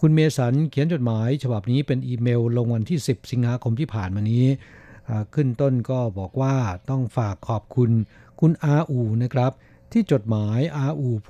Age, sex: 60-79, male